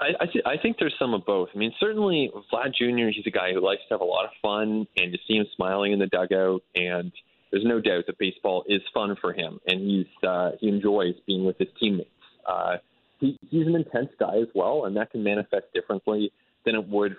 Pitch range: 100-125 Hz